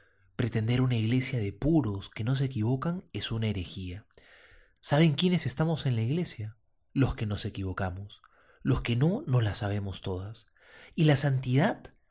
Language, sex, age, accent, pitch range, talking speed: Spanish, male, 30-49, Argentinian, 105-155 Hz, 160 wpm